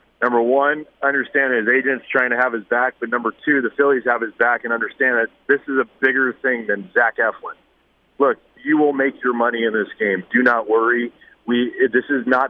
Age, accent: 30-49, American